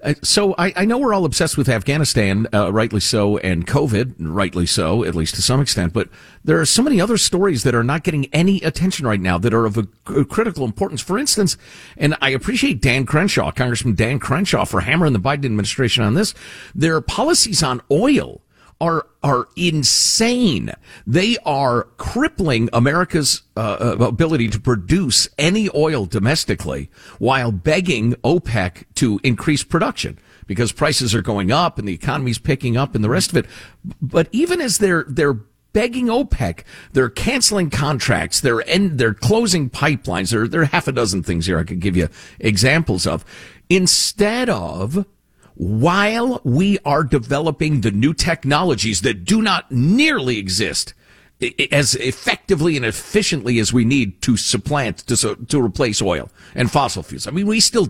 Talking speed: 165 wpm